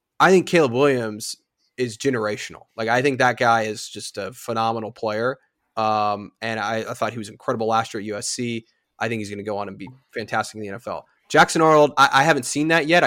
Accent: American